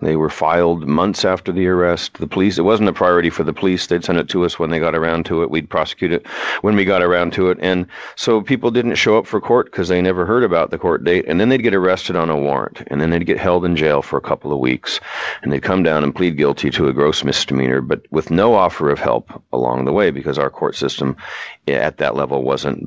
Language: English